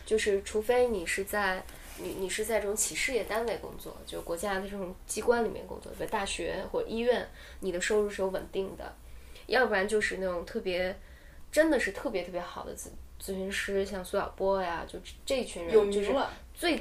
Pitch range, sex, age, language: 185-215 Hz, female, 10-29, Chinese